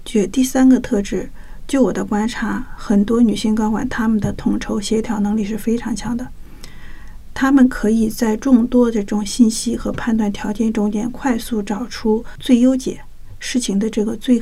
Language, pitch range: Chinese, 215-245 Hz